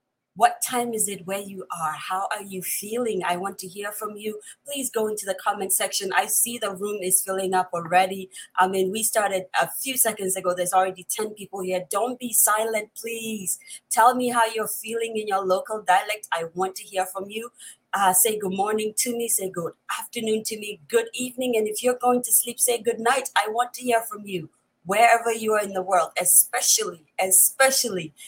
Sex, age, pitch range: female, 30-49, 195-250 Hz